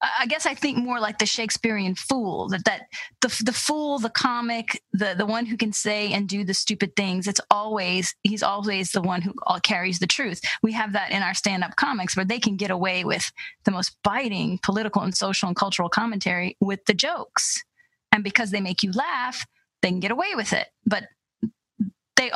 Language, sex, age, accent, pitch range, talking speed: English, female, 30-49, American, 190-240 Hz, 205 wpm